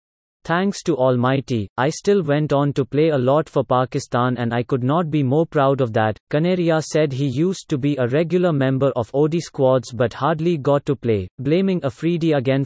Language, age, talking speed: English, 30-49, 200 wpm